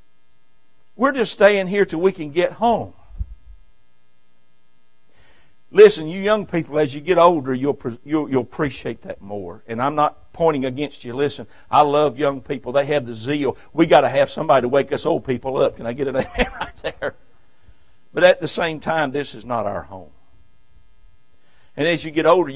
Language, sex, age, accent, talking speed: English, male, 60-79, American, 190 wpm